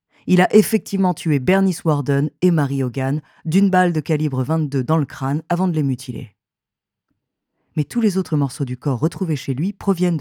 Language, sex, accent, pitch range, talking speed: French, female, French, 140-185 Hz, 190 wpm